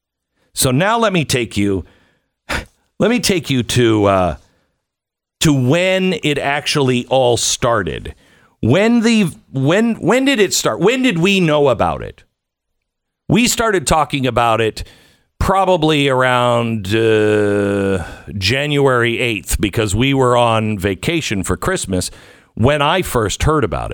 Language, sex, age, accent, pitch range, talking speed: English, male, 50-69, American, 110-155 Hz, 135 wpm